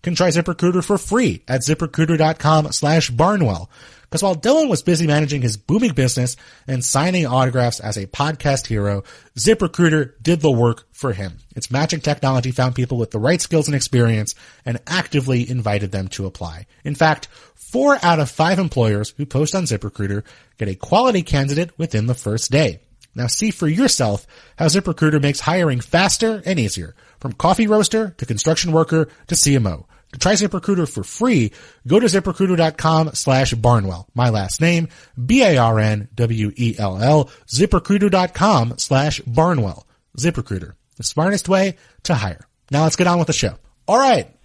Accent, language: American, English